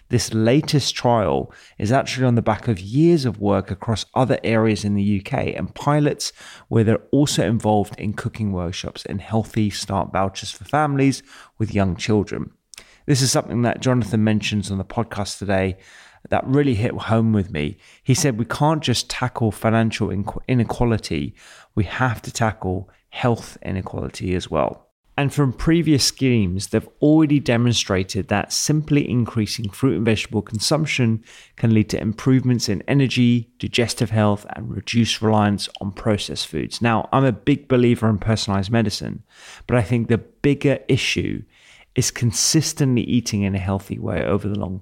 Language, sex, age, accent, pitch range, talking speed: English, male, 30-49, British, 100-125 Hz, 160 wpm